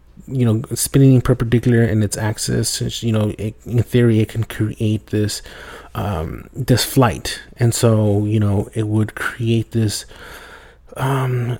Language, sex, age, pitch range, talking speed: English, male, 30-49, 105-120 Hz, 140 wpm